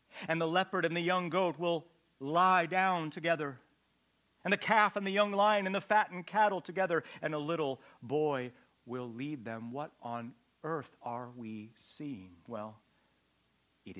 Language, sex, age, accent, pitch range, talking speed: English, male, 40-59, American, 125-165 Hz, 165 wpm